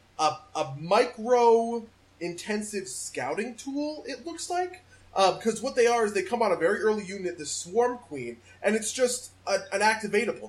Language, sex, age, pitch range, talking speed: English, male, 30-49, 170-235 Hz, 165 wpm